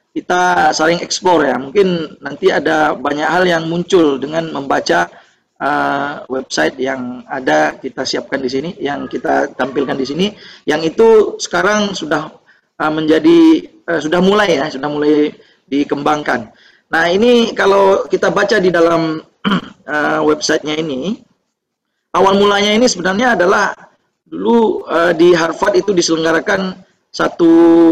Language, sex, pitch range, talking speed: Indonesian, male, 155-195 Hz, 130 wpm